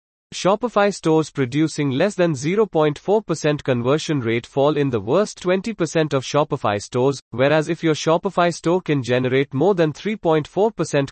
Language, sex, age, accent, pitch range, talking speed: English, male, 30-49, Indian, 130-170 Hz, 155 wpm